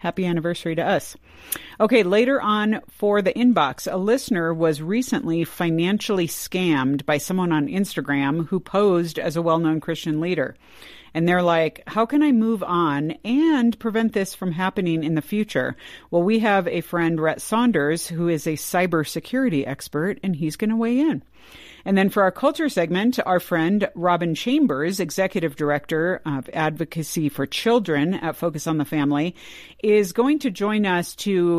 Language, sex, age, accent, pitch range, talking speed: English, female, 50-69, American, 155-205 Hz, 165 wpm